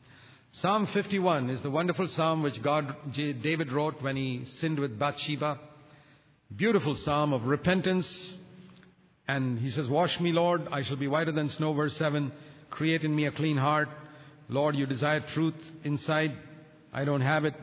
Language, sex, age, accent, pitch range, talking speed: English, male, 50-69, Indian, 130-165 Hz, 165 wpm